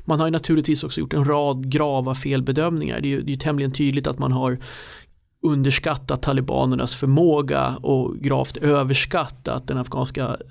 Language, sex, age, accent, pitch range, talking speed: Swedish, male, 30-49, native, 135-150 Hz, 155 wpm